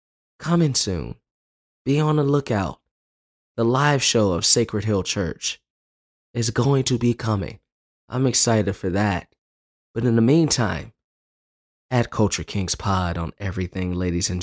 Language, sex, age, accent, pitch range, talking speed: English, male, 20-39, American, 100-125 Hz, 140 wpm